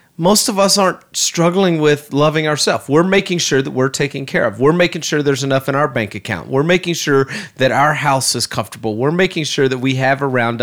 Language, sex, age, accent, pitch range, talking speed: English, male, 30-49, American, 120-150 Hz, 225 wpm